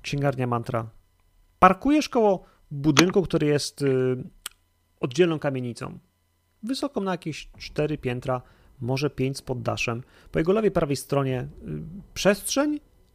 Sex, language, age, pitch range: male, Polish, 30-49, 125-165 Hz